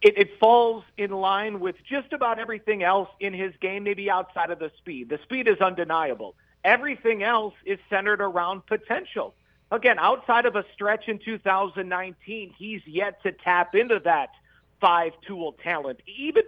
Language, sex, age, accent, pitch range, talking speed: English, male, 50-69, American, 175-220 Hz, 160 wpm